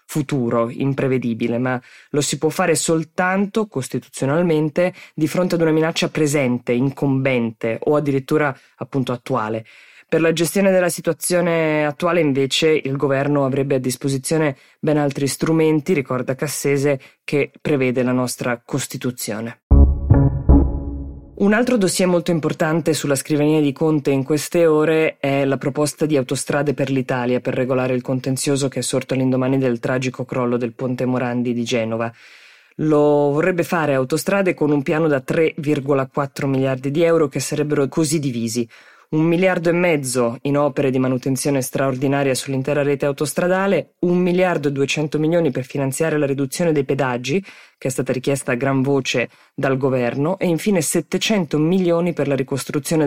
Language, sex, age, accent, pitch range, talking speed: Italian, female, 20-39, native, 130-155 Hz, 150 wpm